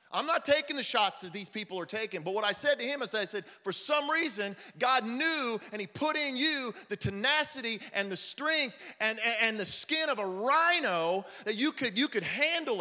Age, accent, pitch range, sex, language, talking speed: 40-59, American, 160-230 Hz, male, English, 225 wpm